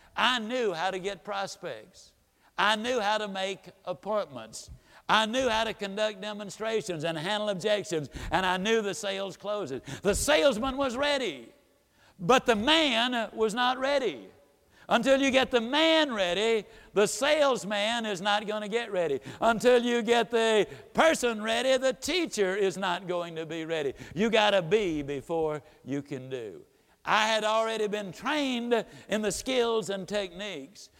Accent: American